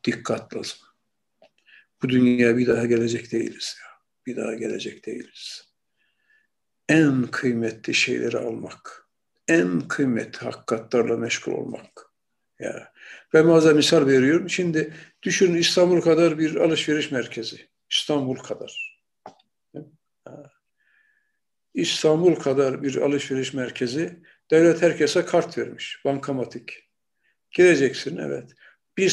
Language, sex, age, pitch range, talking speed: Turkish, male, 60-79, 145-175 Hz, 100 wpm